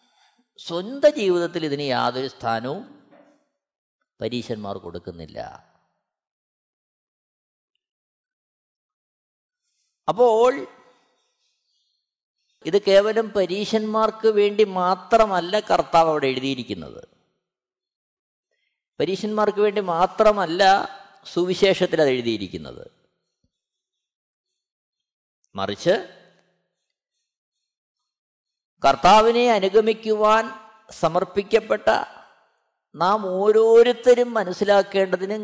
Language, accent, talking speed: Malayalam, native, 50 wpm